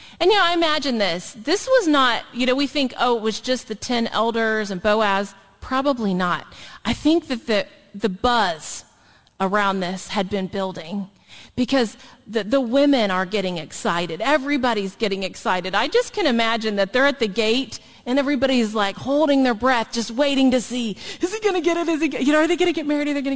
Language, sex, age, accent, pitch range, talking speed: English, female, 40-59, American, 210-300 Hz, 215 wpm